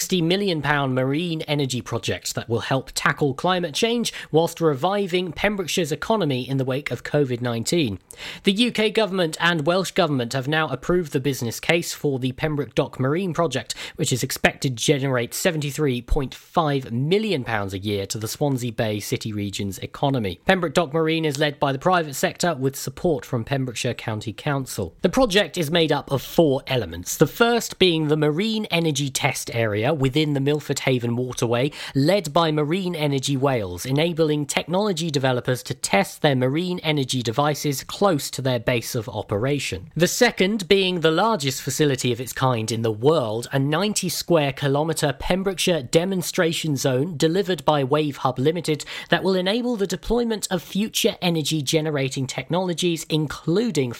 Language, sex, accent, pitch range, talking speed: English, male, British, 130-175 Hz, 160 wpm